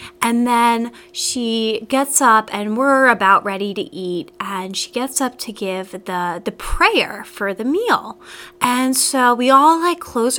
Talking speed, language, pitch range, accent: 170 wpm, English, 225-350 Hz, American